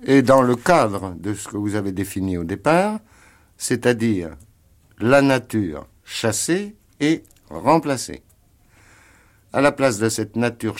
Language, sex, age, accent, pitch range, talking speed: French, male, 60-79, French, 90-120 Hz, 135 wpm